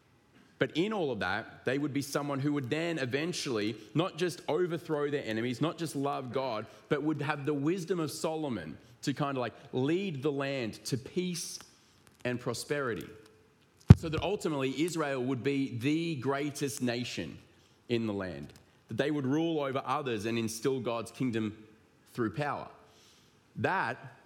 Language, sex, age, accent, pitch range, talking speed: English, male, 30-49, Australian, 120-160 Hz, 160 wpm